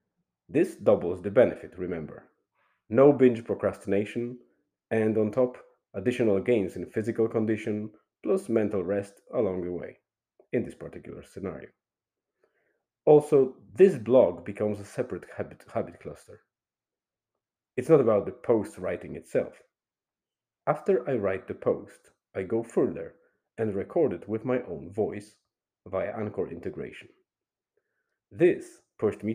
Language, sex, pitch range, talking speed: English, male, 100-130 Hz, 130 wpm